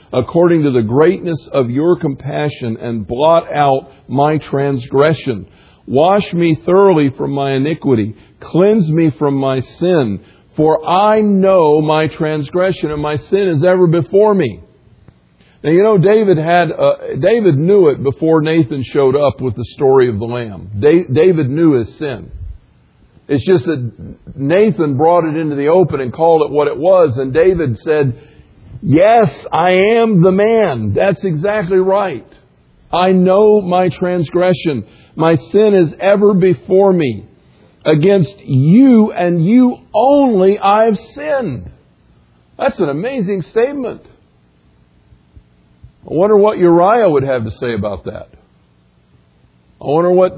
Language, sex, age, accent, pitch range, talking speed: English, male, 50-69, American, 130-185 Hz, 145 wpm